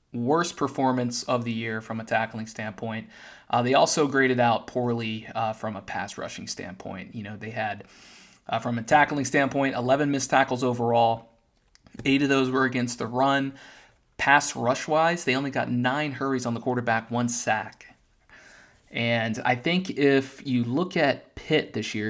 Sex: male